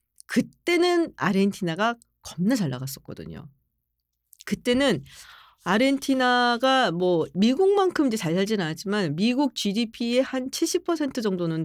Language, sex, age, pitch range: Korean, female, 40-59, 160-260 Hz